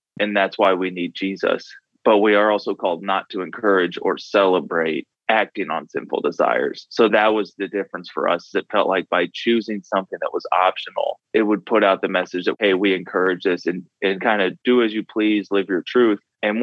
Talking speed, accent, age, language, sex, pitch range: 215 wpm, American, 20-39, English, male, 95-105 Hz